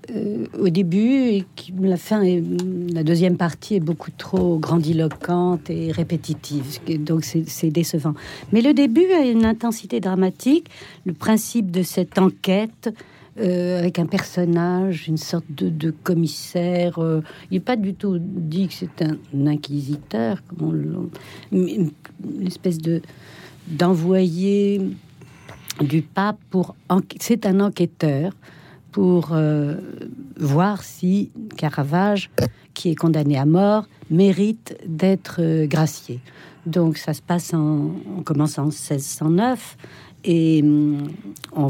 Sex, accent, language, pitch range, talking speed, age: female, French, French, 150-185 Hz, 130 wpm, 60-79